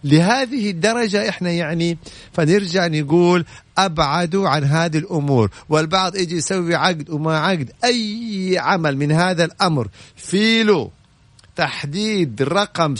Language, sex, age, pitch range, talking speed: Arabic, male, 50-69, 145-195 Hz, 110 wpm